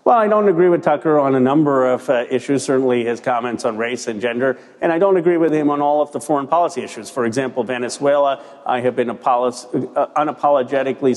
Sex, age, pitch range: male, 40-59, 130-150 Hz